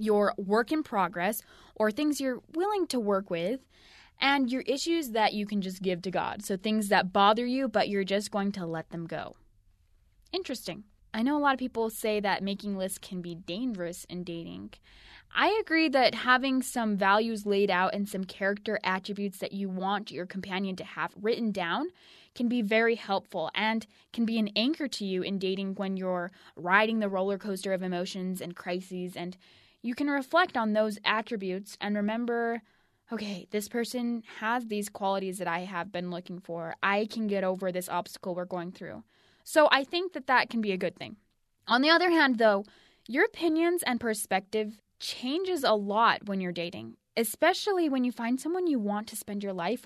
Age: 10-29